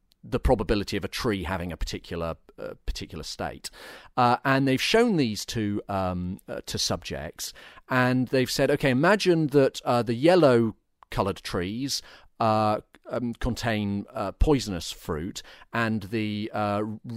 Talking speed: 145 wpm